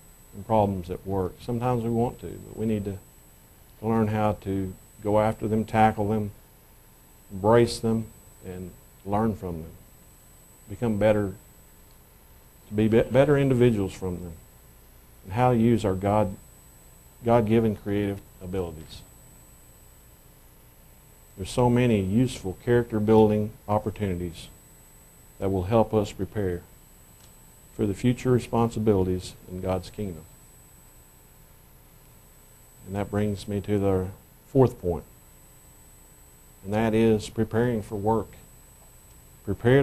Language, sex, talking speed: English, male, 115 wpm